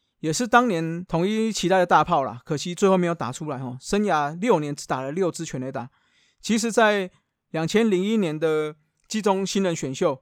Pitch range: 145-185 Hz